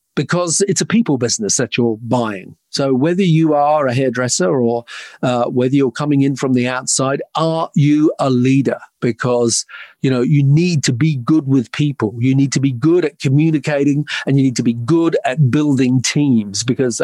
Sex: male